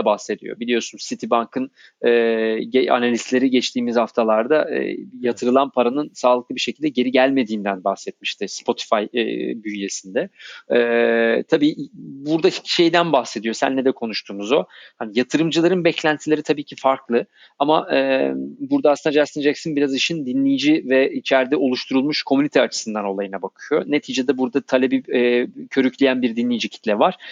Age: 40-59